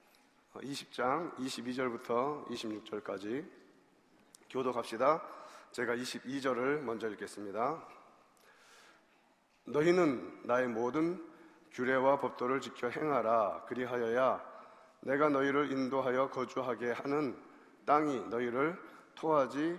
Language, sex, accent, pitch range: Korean, male, native, 120-140 Hz